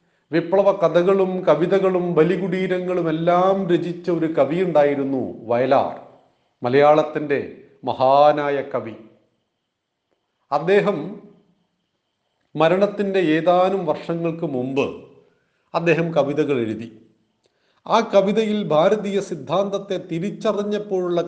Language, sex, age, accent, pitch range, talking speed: Malayalam, male, 40-59, native, 140-180 Hz, 70 wpm